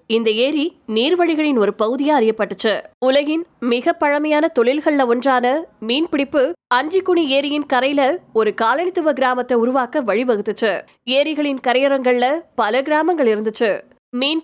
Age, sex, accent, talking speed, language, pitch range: 20-39, female, native, 90 wpm, Tamil, 235-300 Hz